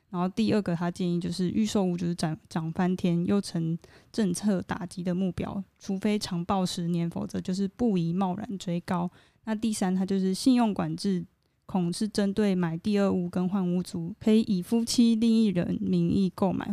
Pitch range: 175-205 Hz